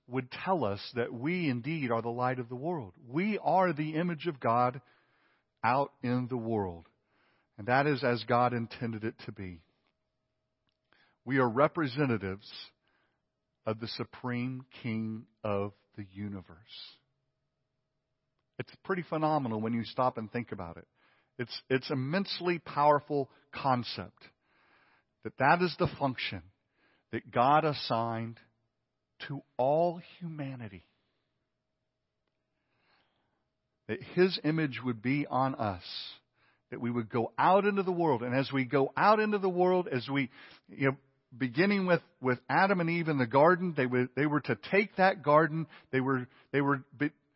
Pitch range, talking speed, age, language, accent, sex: 120-160 Hz, 145 wpm, 50-69, Danish, American, male